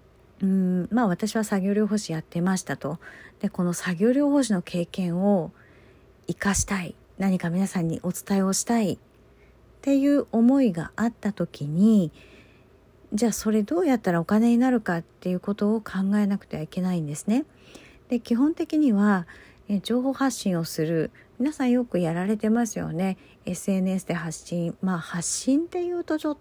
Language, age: Japanese, 50-69